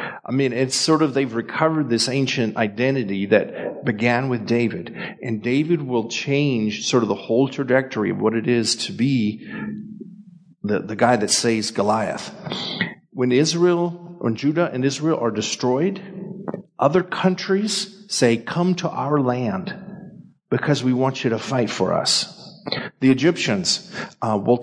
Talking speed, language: 150 wpm, English